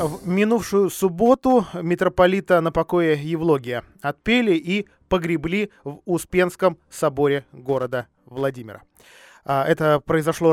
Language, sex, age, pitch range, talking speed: Russian, male, 20-39, 125-165 Hz, 95 wpm